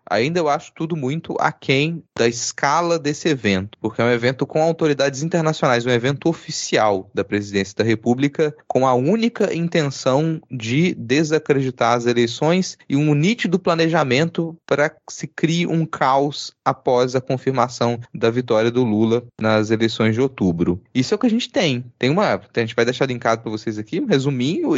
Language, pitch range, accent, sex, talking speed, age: Portuguese, 115-155 Hz, Brazilian, male, 175 wpm, 20-39